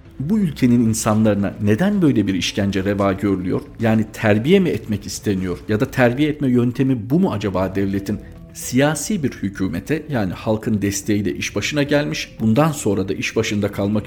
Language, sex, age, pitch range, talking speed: Turkish, male, 50-69, 100-135 Hz, 165 wpm